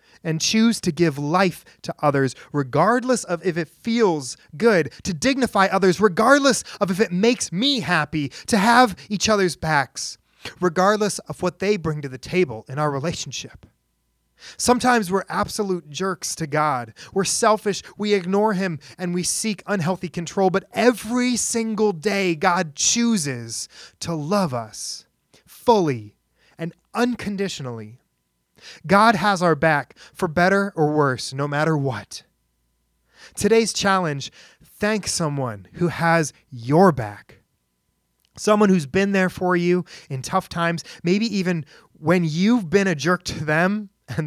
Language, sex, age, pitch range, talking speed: English, male, 30-49, 140-200 Hz, 140 wpm